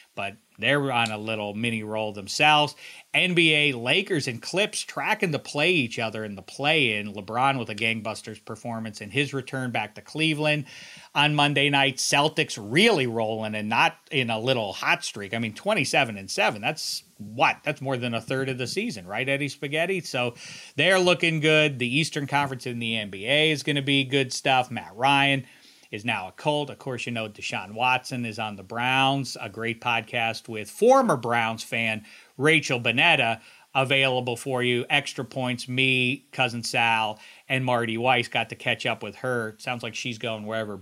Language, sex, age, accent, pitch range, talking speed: English, male, 40-59, American, 115-145 Hz, 180 wpm